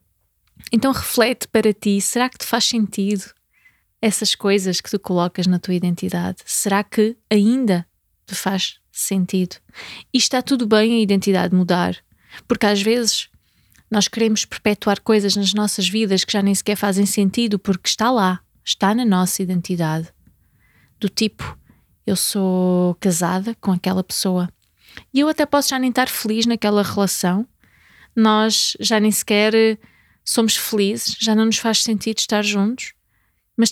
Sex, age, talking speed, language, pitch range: female, 20-39, 150 wpm, Portuguese, 185-220 Hz